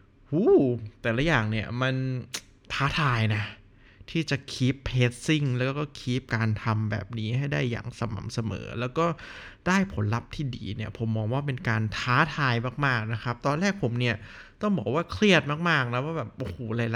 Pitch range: 115-150 Hz